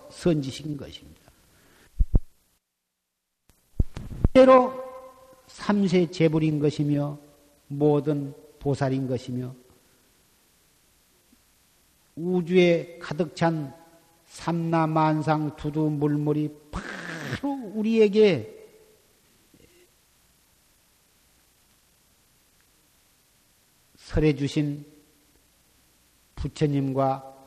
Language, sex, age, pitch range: Korean, male, 50-69, 140-175 Hz